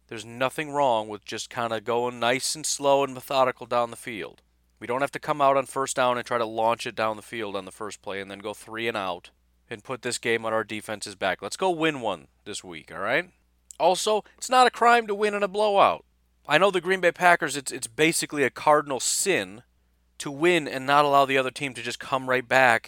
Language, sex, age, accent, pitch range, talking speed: English, male, 30-49, American, 110-150 Hz, 245 wpm